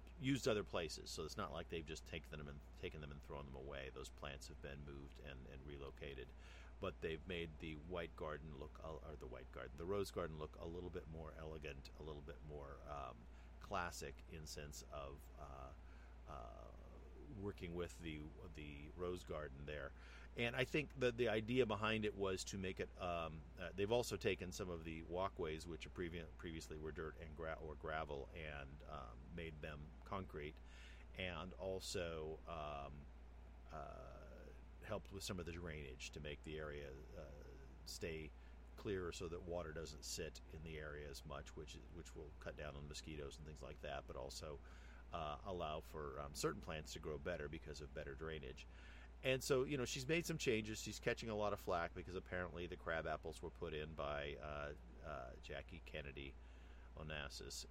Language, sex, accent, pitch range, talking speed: English, male, American, 70-85 Hz, 190 wpm